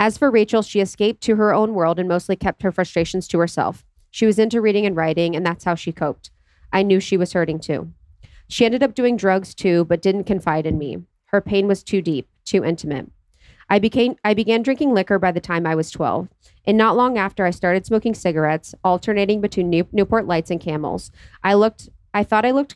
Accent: American